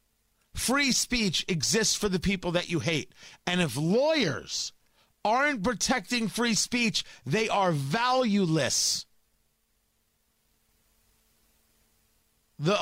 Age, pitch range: 40-59, 180-230 Hz